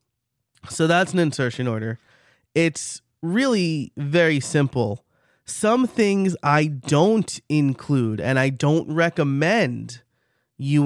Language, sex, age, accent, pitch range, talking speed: English, male, 30-49, American, 120-150 Hz, 105 wpm